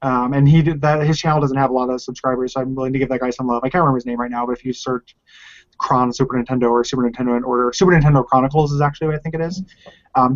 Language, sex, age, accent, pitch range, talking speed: English, male, 20-39, American, 130-160 Hz, 295 wpm